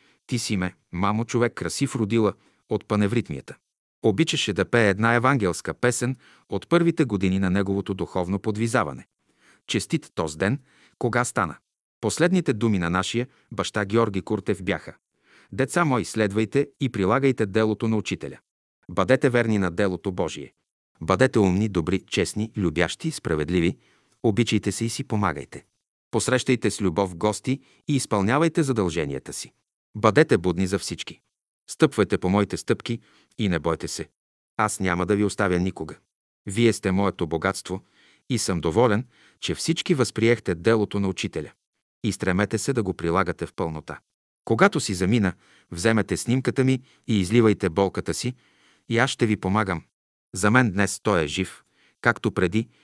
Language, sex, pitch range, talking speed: Bulgarian, male, 95-120 Hz, 145 wpm